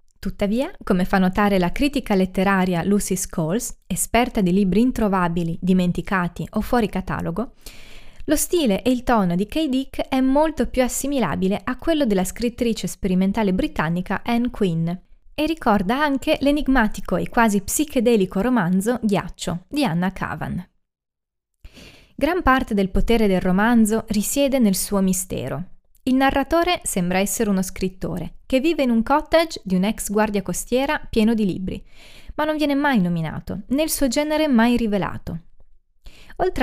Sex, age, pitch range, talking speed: female, 20-39, 185-260 Hz, 145 wpm